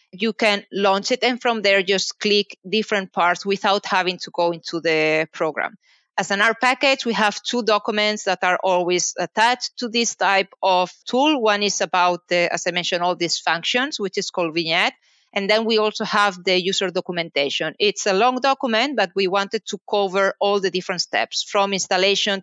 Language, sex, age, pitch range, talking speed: English, female, 30-49, 180-215 Hz, 195 wpm